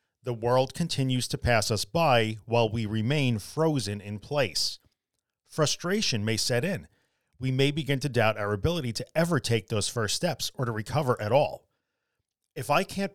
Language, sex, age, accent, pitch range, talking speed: English, male, 40-59, American, 110-145 Hz, 175 wpm